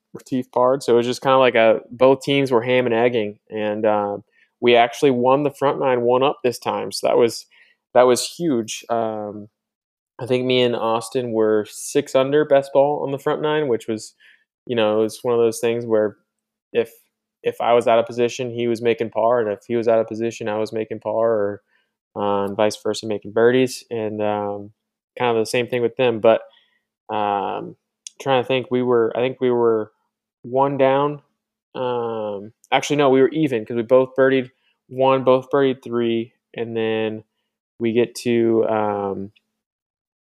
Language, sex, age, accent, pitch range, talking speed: English, male, 20-39, American, 110-130 Hz, 195 wpm